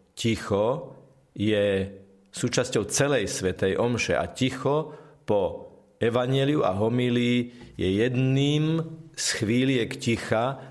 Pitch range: 105-130 Hz